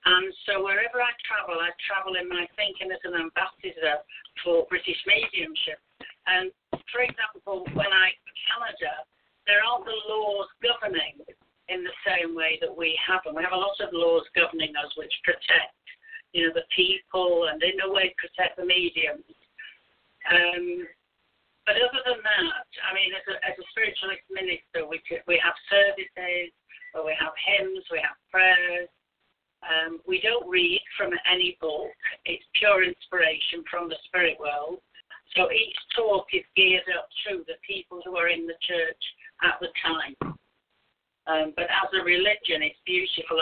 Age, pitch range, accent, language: 60-79, 170-220 Hz, British, English